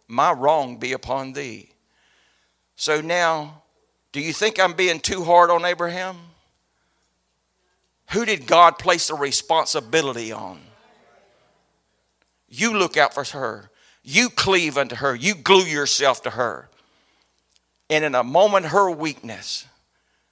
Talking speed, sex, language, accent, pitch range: 125 wpm, male, English, American, 130-180 Hz